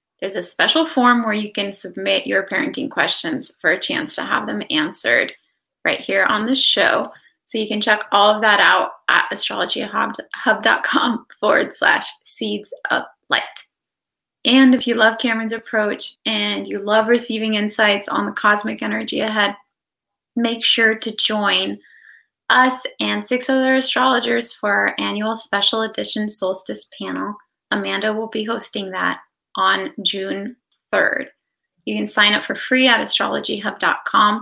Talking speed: 150 wpm